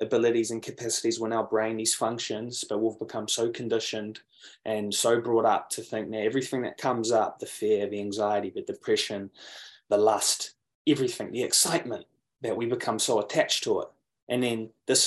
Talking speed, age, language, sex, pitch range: 180 wpm, 20-39, English, male, 110-140 Hz